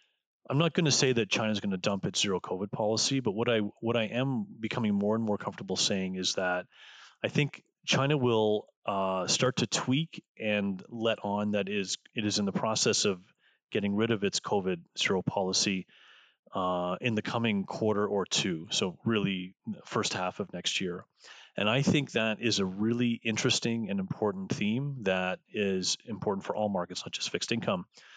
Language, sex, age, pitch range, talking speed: English, male, 30-49, 95-125 Hz, 190 wpm